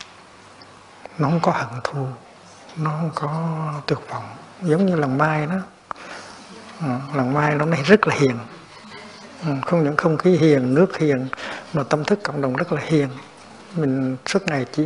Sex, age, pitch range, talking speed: male, 60-79, 140-175 Hz, 175 wpm